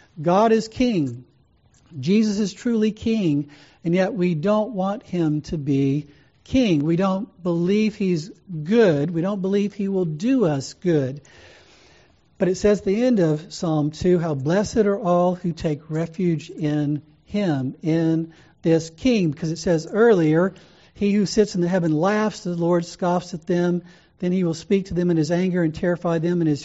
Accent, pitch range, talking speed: American, 155-200 Hz, 180 wpm